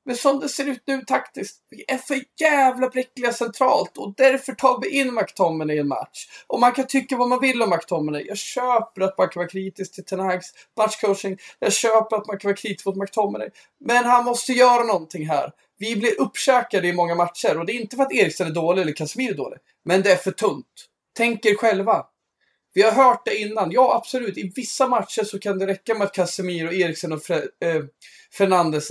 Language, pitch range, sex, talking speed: Swedish, 170-240 Hz, male, 215 wpm